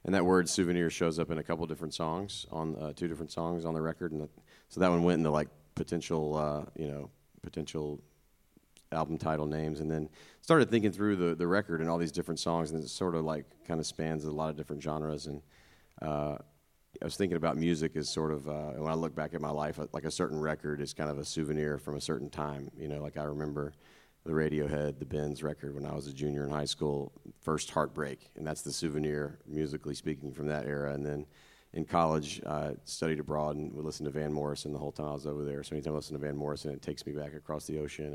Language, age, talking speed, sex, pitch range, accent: English, 30-49, 240 wpm, male, 75-80 Hz, American